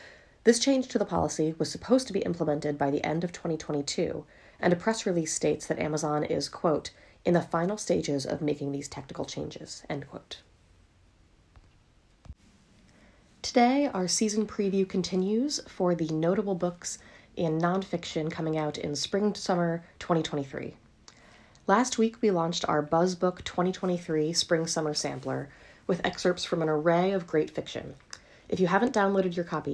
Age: 30-49